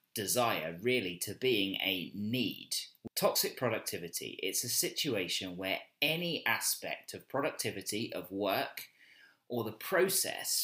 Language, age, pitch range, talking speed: English, 30-49, 95-130 Hz, 120 wpm